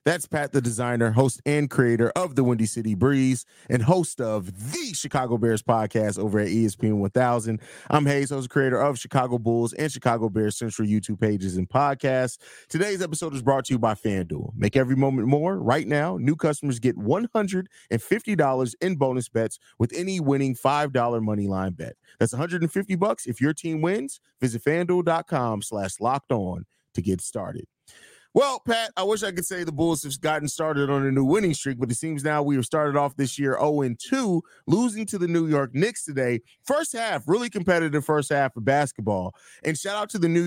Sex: male